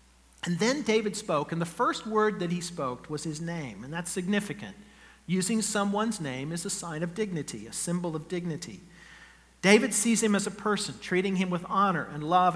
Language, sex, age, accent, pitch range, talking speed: English, male, 50-69, American, 150-210 Hz, 195 wpm